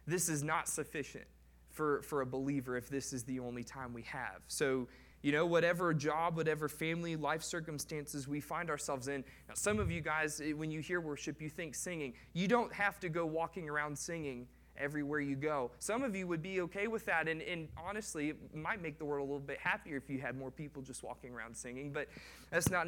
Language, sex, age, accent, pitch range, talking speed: English, male, 20-39, American, 125-155 Hz, 220 wpm